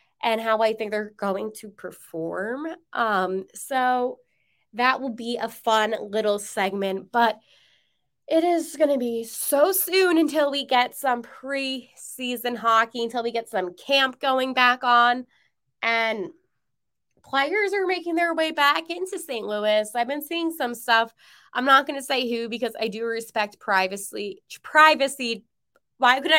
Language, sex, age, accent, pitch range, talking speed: English, female, 20-39, American, 215-275 Hz, 155 wpm